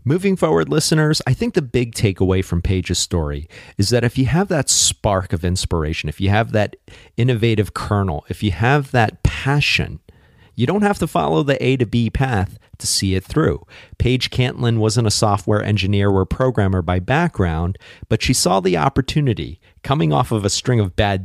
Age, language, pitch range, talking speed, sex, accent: 40-59, English, 95-120 Hz, 190 wpm, male, American